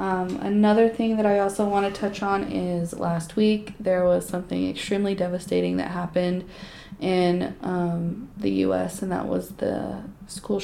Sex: female